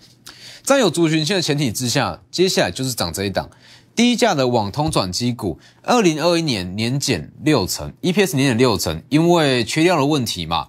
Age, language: 20-39, Chinese